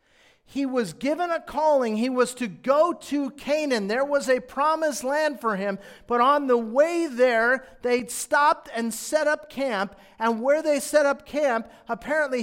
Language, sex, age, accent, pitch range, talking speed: English, male, 40-59, American, 155-250 Hz, 175 wpm